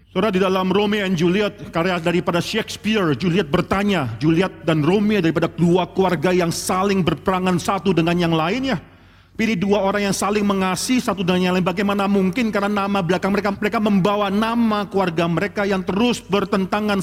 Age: 40-59